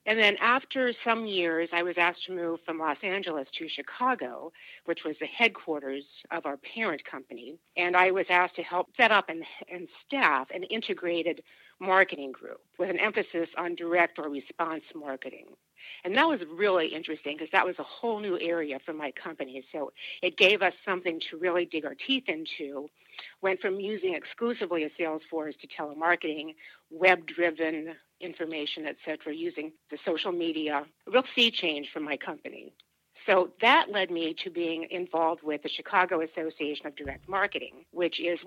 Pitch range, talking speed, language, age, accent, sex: 155-185 Hz, 175 wpm, English, 60-79, American, female